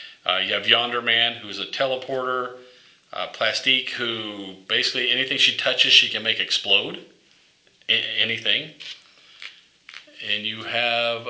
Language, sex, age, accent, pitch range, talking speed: English, male, 40-59, American, 100-125 Hz, 120 wpm